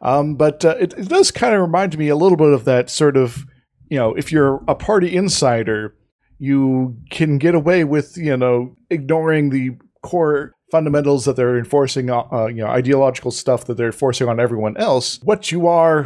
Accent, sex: American, male